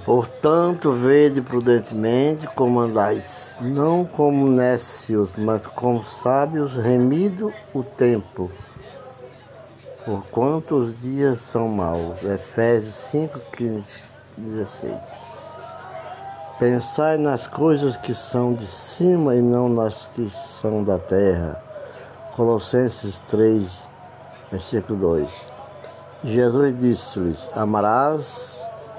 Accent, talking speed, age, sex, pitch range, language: Brazilian, 85 wpm, 60-79, male, 105-140 Hz, Portuguese